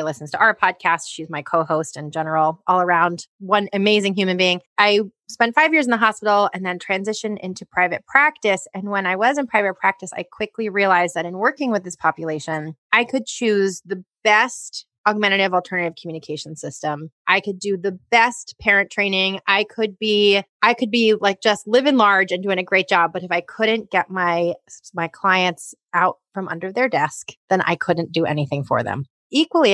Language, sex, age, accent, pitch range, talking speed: English, female, 30-49, American, 170-215 Hz, 195 wpm